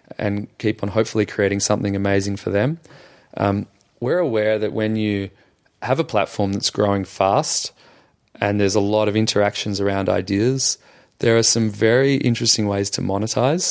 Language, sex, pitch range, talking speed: English, male, 100-110 Hz, 160 wpm